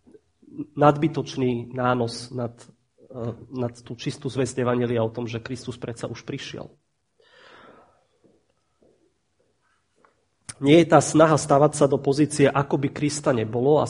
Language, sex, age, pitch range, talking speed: Slovak, male, 30-49, 125-145 Hz, 120 wpm